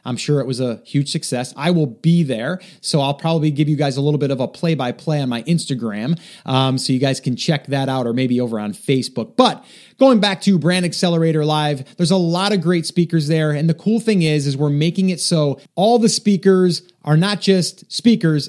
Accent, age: American, 30-49